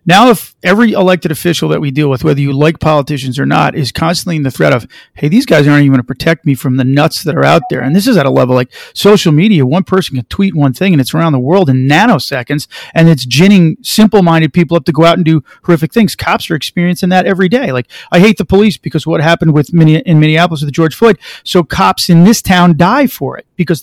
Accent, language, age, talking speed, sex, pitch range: American, English, 40-59, 255 wpm, male, 145-180 Hz